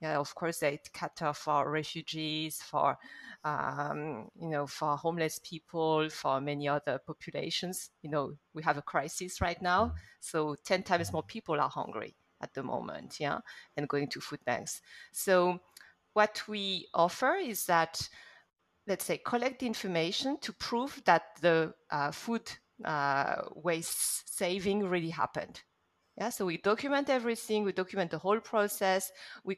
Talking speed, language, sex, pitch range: 150 wpm, English, female, 160-210 Hz